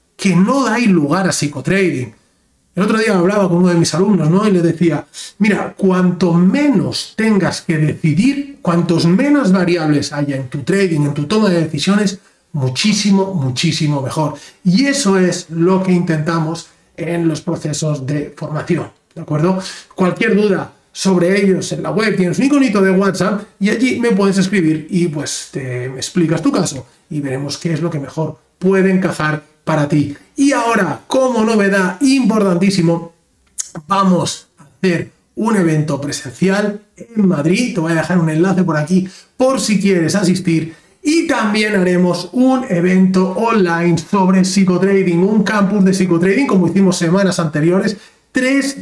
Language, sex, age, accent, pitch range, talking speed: Spanish, male, 40-59, Spanish, 165-200 Hz, 160 wpm